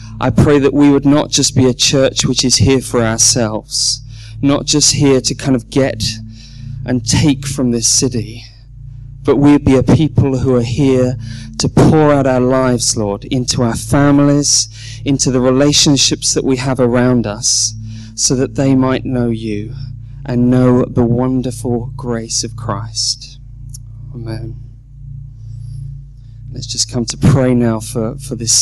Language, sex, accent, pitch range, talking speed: English, male, British, 120-135 Hz, 155 wpm